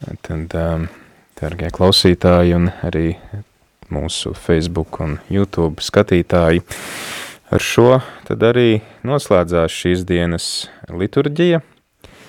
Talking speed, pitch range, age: 90 wpm, 80-95 Hz, 20-39